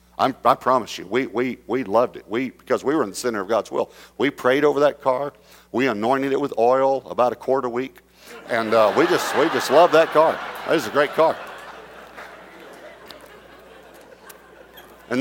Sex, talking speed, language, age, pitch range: male, 195 wpm, English, 50-69, 100-135 Hz